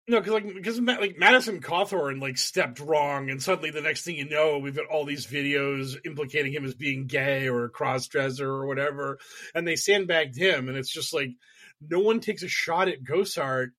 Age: 30-49